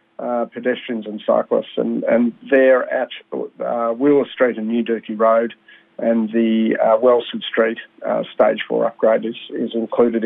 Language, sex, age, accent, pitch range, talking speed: English, male, 40-59, Australian, 115-130 Hz, 160 wpm